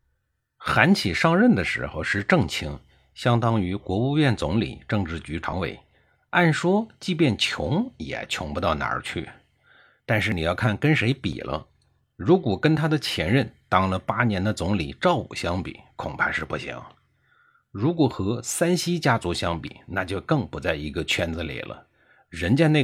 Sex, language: male, Chinese